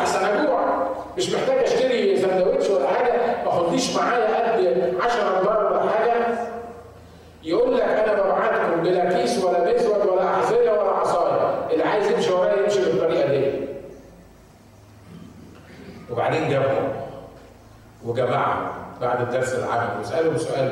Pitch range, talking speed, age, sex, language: 125-180 Hz, 115 wpm, 50-69, male, Arabic